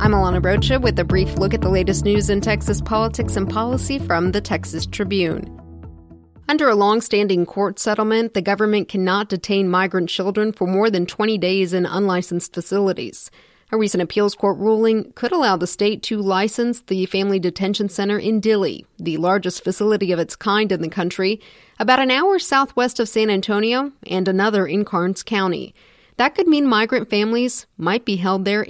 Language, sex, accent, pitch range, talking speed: English, female, American, 190-220 Hz, 180 wpm